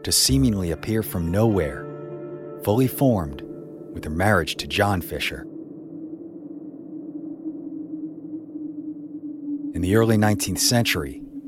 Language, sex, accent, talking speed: English, male, American, 95 wpm